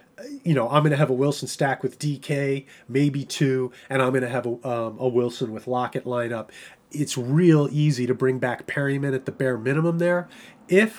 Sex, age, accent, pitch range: male, 30-49, American, 125-150 Hz